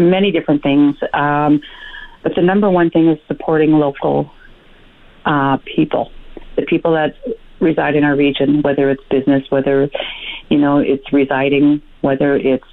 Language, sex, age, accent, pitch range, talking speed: English, female, 40-59, American, 140-160 Hz, 145 wpm